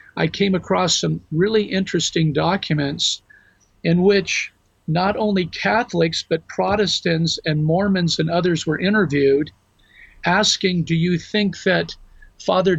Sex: male